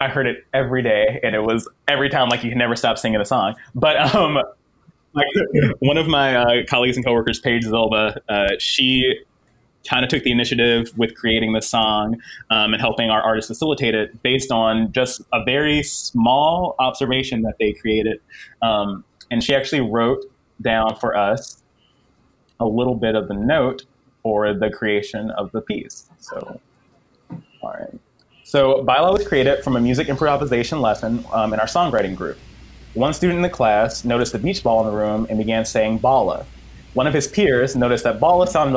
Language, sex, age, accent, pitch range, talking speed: English, male, 20-39, American, 110-130 Hz, 185 wpm